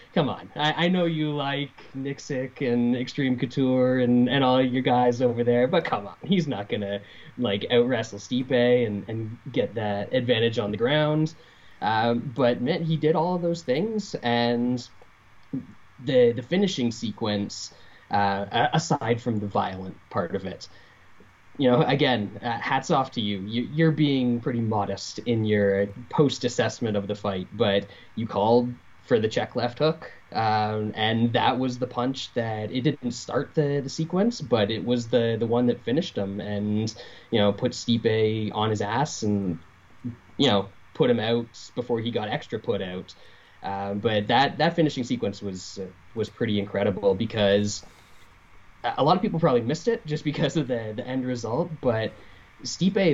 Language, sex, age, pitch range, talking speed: English, male, 20-39, 105-135 Hz, 175 wpm